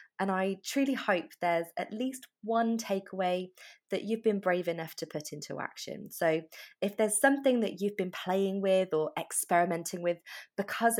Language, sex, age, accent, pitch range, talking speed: English, female, 20-39, British, 160-205 Hz, 170 wpm